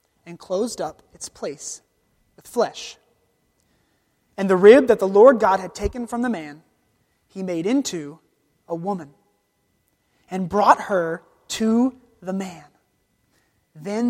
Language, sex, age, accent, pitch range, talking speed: English, male, 30-49, American, 165-250 Hz, 130 wpm